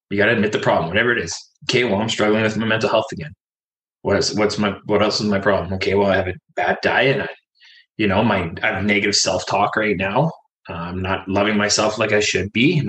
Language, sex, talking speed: English, male, 250 wpm